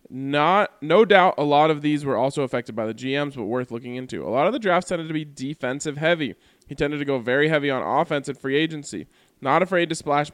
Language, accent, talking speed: English, American, 245 wpm